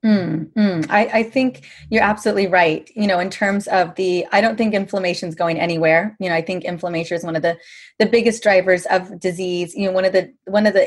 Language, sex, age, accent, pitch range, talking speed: English, female, 20-39, American, 180-230 Hz, 235 wpm